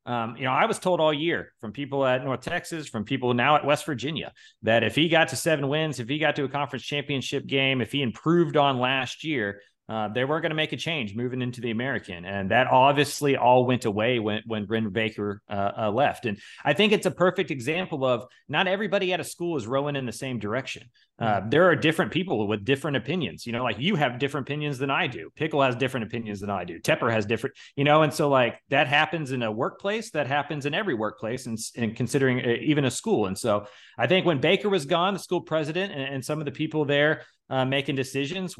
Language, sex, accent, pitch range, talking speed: English, male, American, 120-155 Hz, 240 wpm